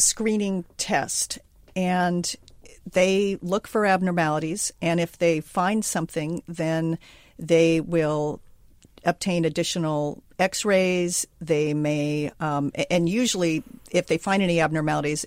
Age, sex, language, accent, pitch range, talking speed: 50-69, female, English, American, 165-200 Hz, 115 wpm